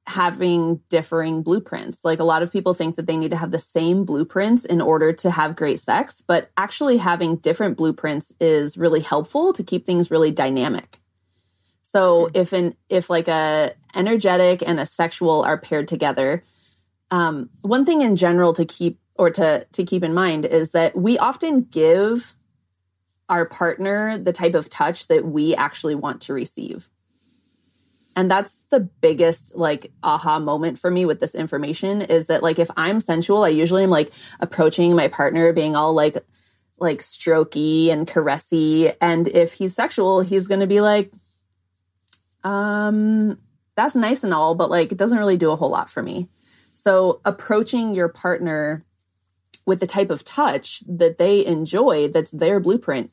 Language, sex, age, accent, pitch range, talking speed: English, female, 30-49, American, 155-190 Hz, 170 wpm